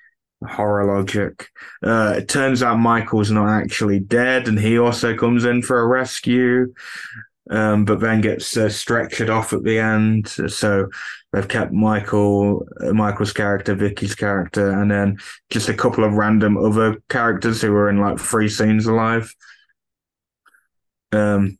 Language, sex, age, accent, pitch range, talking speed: English, male, 20-39, British, 100-120 Hz, 150 wpm